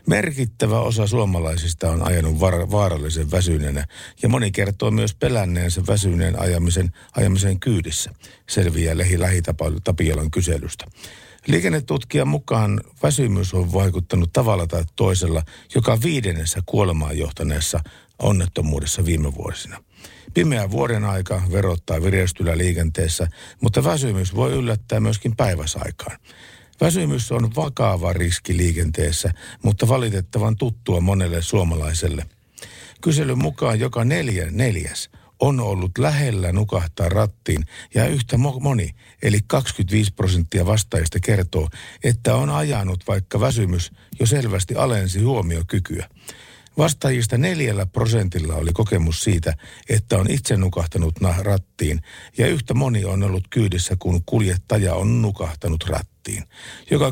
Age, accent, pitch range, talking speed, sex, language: 50-69, native, 85-115 Hz, 115 wpm, male, Finnish